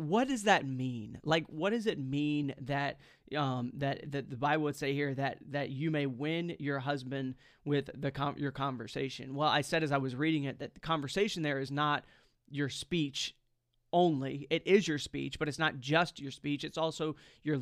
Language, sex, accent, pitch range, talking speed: English, male, American, 140-175 Hz, 205 wpm